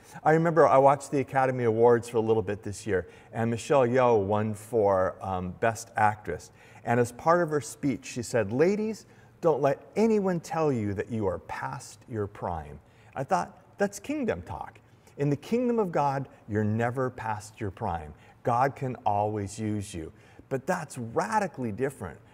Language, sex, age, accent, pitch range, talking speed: English, male, 40-59, American, 105-140 Hz, 175 wpm